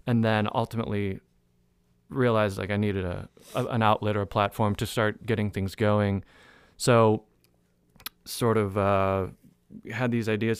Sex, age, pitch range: male, 20-39, 95-110 Hz